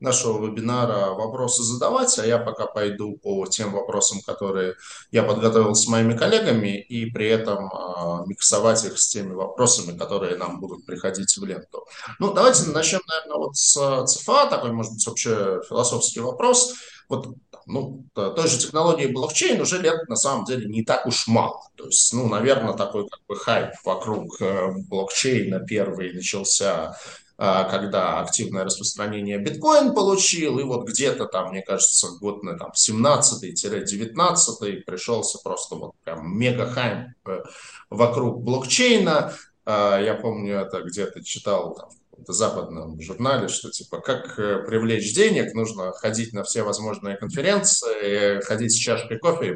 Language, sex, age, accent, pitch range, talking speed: Russian, male, 20-39, native, 100-150 Hz, 140 wpm